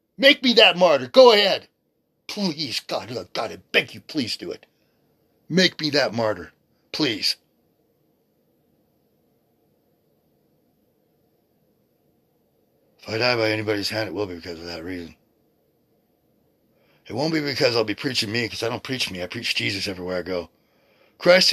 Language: English